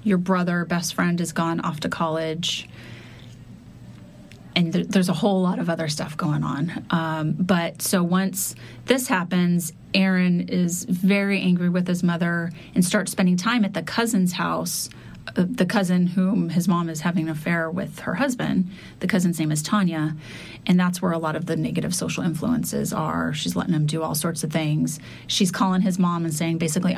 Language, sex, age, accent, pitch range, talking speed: English, female, 30-49, American, 165-190 Hz, 190 wpm